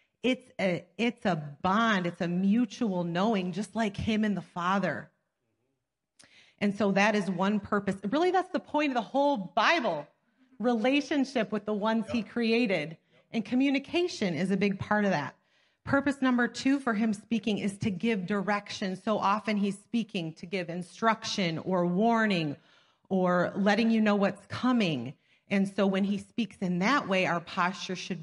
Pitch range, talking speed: 165-215 Hz, 170 wpm